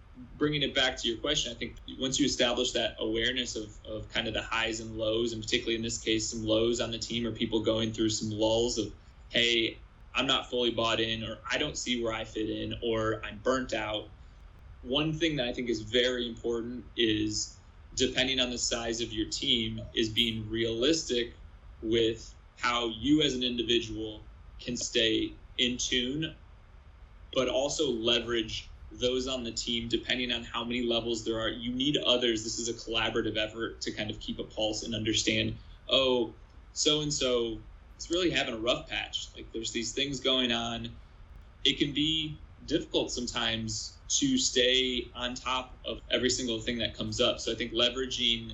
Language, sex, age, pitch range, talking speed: English, male, 20-39, 110-120 Hz, 185 wpm